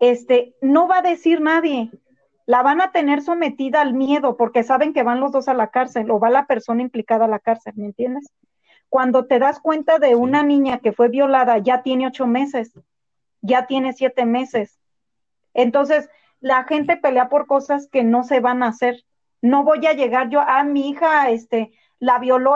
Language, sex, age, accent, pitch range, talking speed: Spanish, female, 30-49, Mexican, 240-280 Hz, 195 wpm